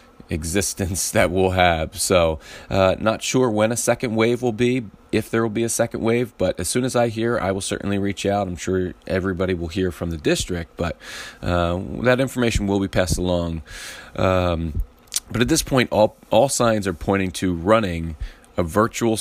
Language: English